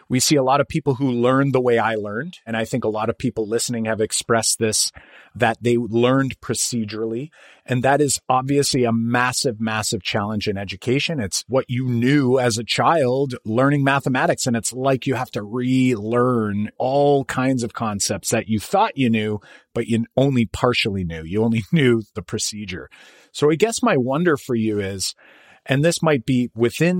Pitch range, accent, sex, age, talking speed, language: 110-135 Hz, American, male, 30-49, 190 wpm, English